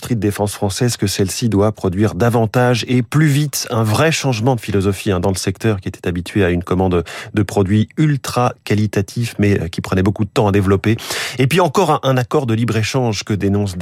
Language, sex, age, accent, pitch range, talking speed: French, male, 30-49, French, 110-135 Hz, 200 wpm